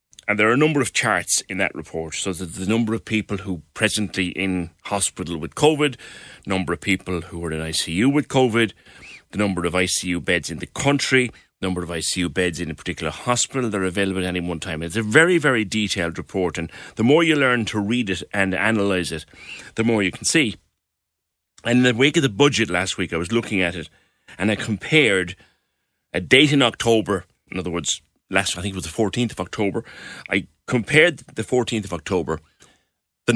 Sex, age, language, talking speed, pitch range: male, 30-49, English, 210 wpm, 90-120 Hz